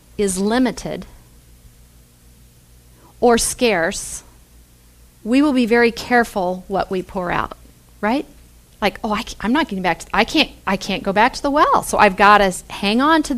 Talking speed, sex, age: 170 wpm, female, 40-59